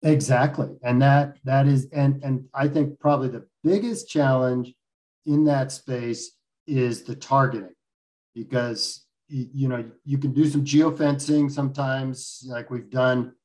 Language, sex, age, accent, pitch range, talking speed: English, male, 50-69, American, 125-150 Hz, 140 wpm